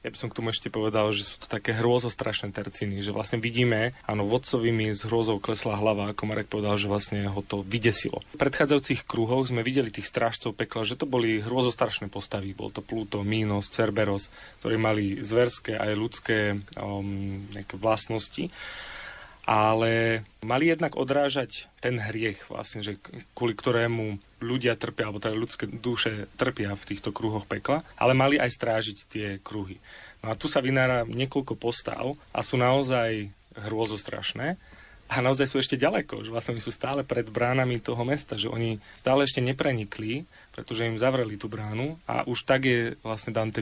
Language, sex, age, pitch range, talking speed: Slovak, male, 30-49, 105-125 Hz, 170 wpm